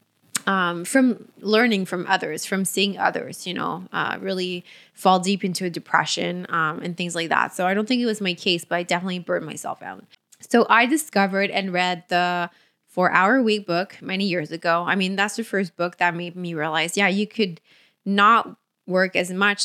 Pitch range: 180-225 Hz